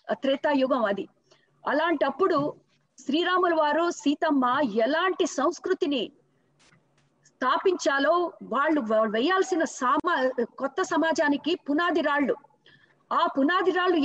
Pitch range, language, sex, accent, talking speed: 275-335 Hz, Telugu, female, native, 75 wpm